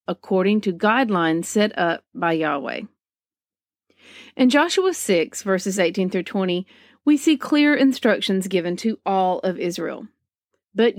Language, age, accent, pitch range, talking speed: English, 40-59, American, 180-235 Hz, 125 wpm